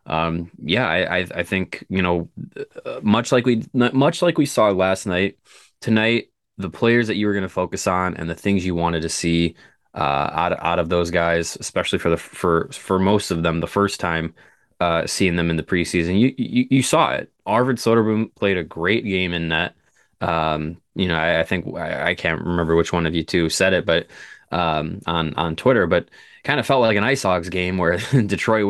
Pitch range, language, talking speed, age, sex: 85-110 Hz, English, 220 wpm, 20-39, male